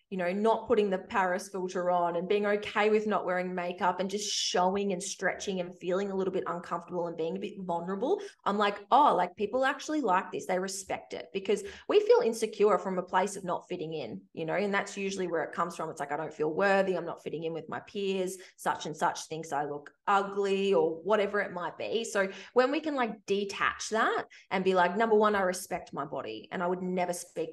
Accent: Australian